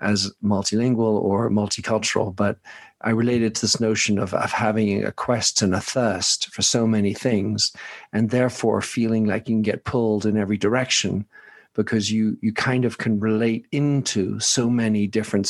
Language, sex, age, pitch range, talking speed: English, male, 50-69, 105-120 Hz, 170 wpm